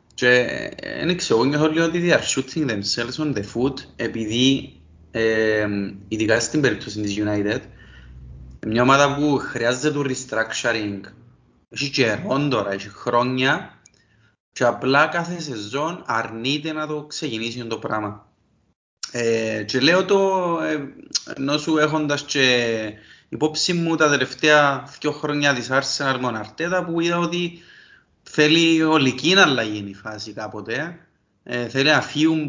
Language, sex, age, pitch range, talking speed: Greek, male, 30-49, 115-160 Hz, 120 wpm